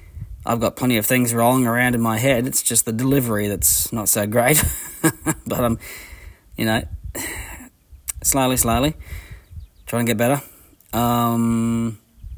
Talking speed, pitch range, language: 140 wpm, 95-125 Hz, English